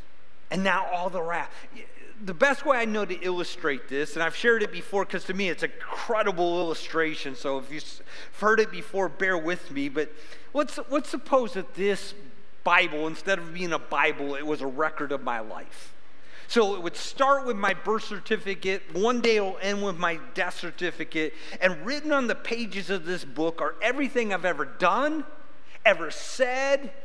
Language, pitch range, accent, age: English, 175-260 Hz, American, 40-59